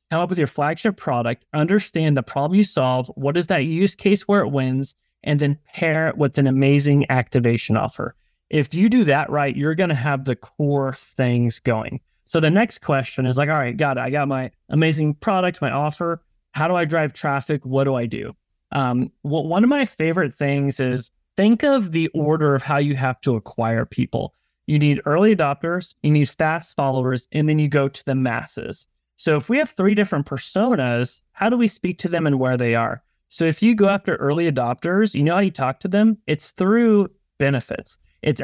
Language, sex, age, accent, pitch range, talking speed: English, male, 30-49, American, 130-170 Hz, 210 wpm